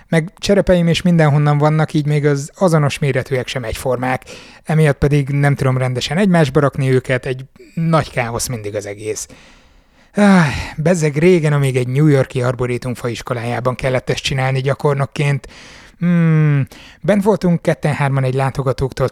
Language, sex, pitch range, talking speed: Hungarian, male, 125-150 Hz, 145 wpm